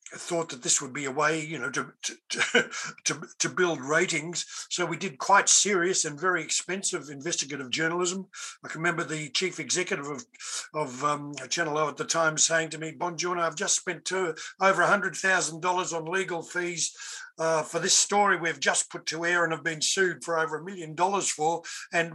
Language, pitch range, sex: English, 150-180 Hz, male